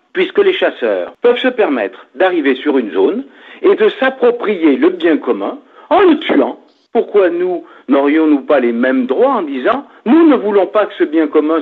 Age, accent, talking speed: 60-79, French, 185 wpm